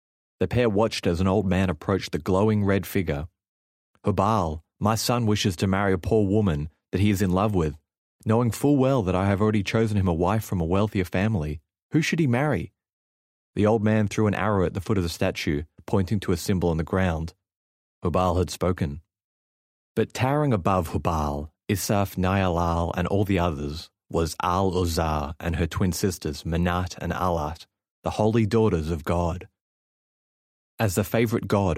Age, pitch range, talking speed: 30-49, 80-105 Hz, 180 wpm